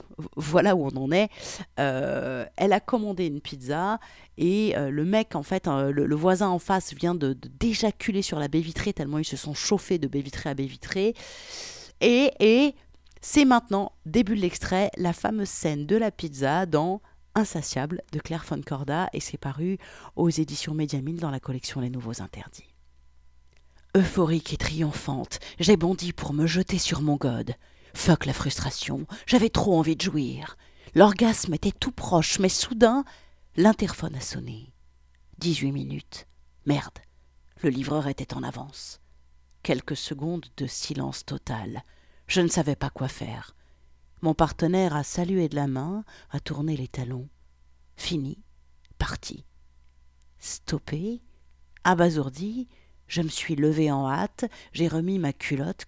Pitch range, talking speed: 130-185 Hz, 155 wpm